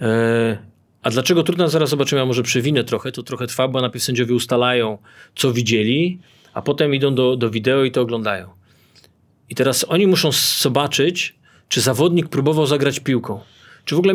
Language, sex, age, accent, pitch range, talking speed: Polish, male, 40-59, native, 120-150 Hz, 170 wpm